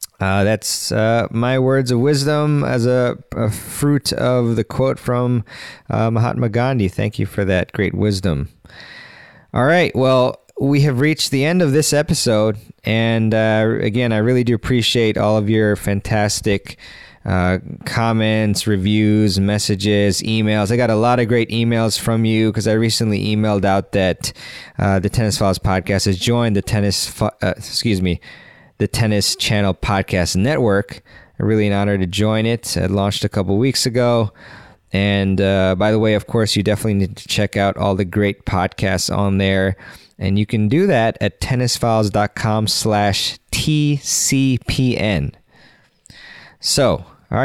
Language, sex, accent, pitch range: English, male, American, 100-120 Hz